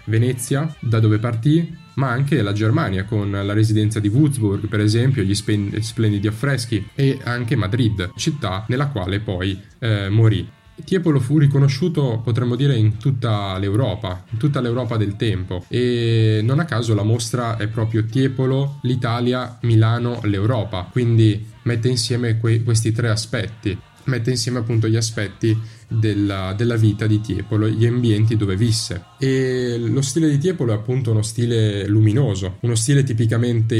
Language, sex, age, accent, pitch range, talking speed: Italian, male, 10-29, native, 105-125 Hz, 155 wpm